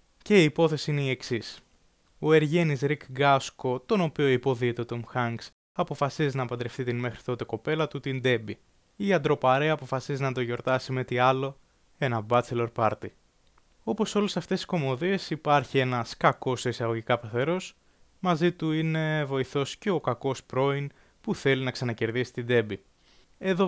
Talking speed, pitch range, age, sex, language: 160 wpm, 120-150 Hz, 20-39, male, Greek